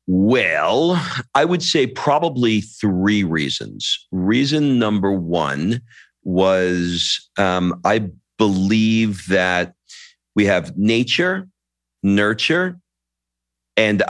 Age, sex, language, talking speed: 40-59, male, English, 85 wpm